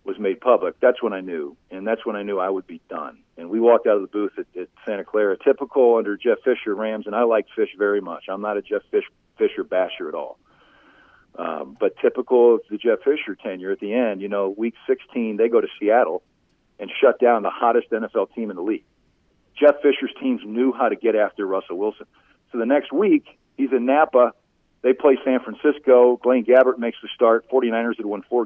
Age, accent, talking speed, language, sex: 40-59, American, 225 wpm, English, male